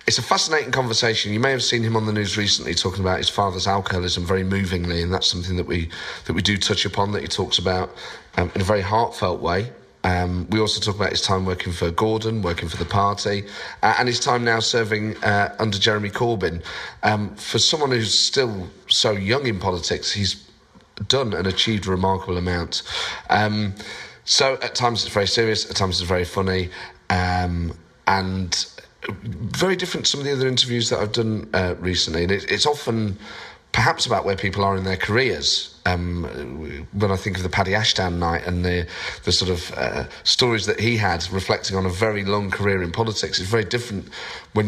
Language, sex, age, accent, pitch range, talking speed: English, male, 30-49, British, 90-110 Hz, 200 wpm